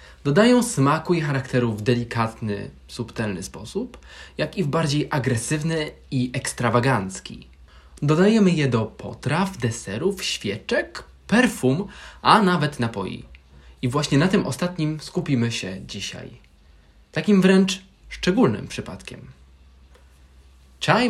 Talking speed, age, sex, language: 110 wpm, 20-39, male, Polish